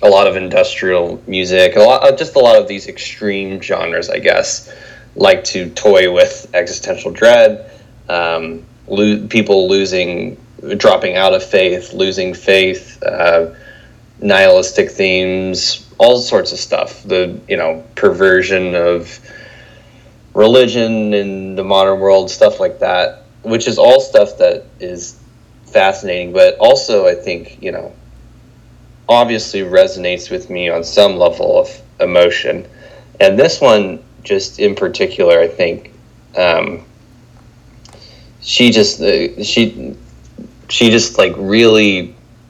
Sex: male